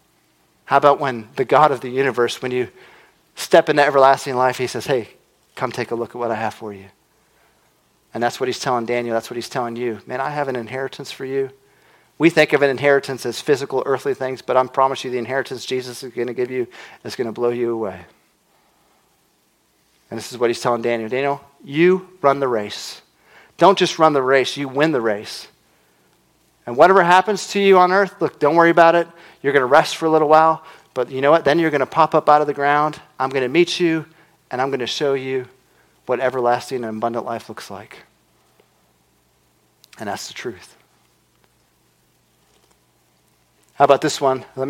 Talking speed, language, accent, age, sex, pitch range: 205 wpm, English, American, 40-59, male, 120-150 Hz